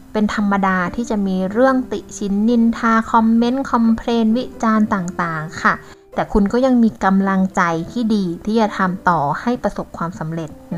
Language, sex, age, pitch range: Thai, female, 20-39, 185-235 Hz